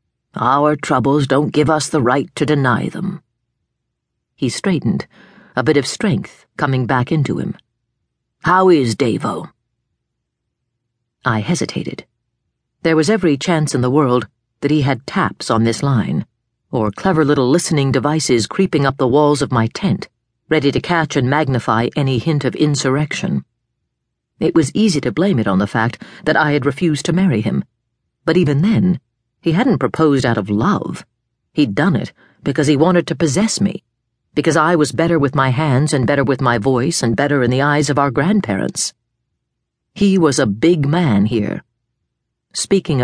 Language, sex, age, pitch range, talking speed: English, female, 50-69, 120-165 Hz, 170 wpm